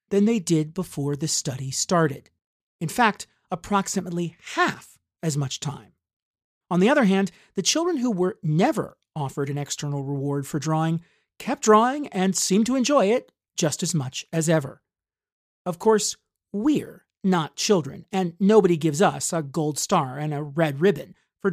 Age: 40-59